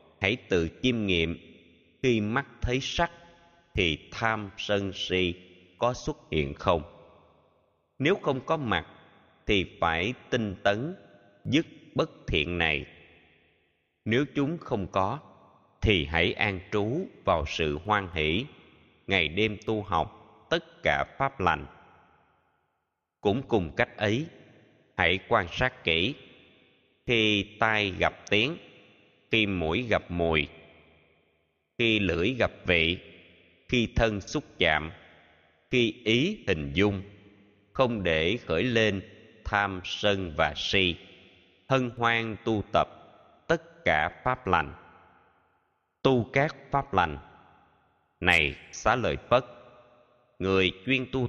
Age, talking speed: 20-39, 120 wpm